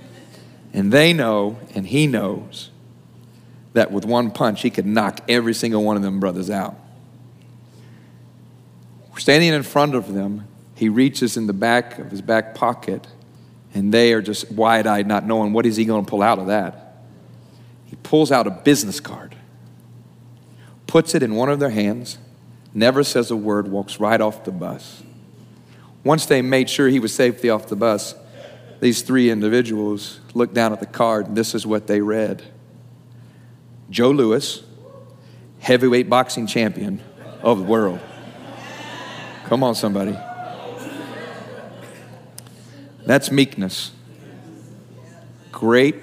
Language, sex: English, male